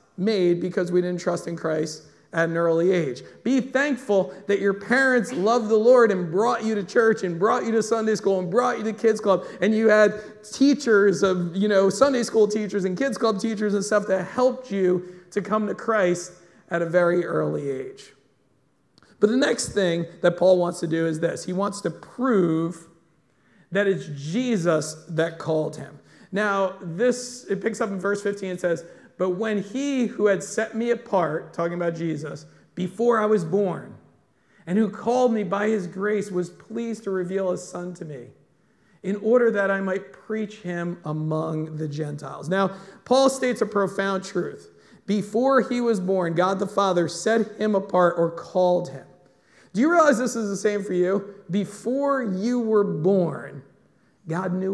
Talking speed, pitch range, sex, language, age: 185 wpm, 175-220 Hz, male, English, 40-59